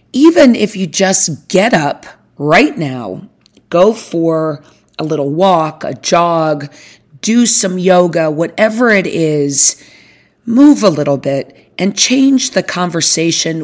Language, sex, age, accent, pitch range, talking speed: English, female, 40-59, American, 150-190 Hz, 130 wpm